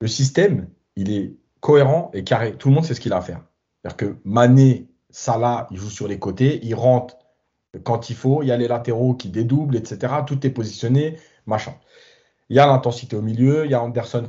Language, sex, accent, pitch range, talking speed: French, male, French, 115-140 Hz, 220 wpm